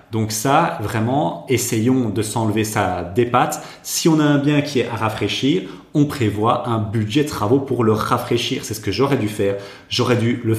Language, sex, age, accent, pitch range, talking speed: French, male, 30-49, French, 100-125 Hz, 205 wpm